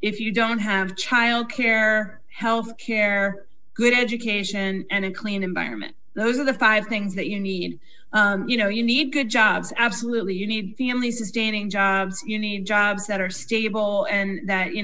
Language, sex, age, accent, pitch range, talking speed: English, female, 30-49, American, 200-230 Hz, 165 wpm